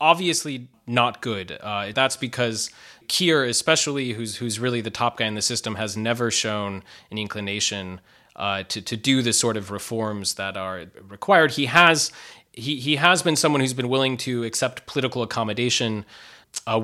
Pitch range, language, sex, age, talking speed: 105-130 Hz, English, male, 20-39, 170 wpm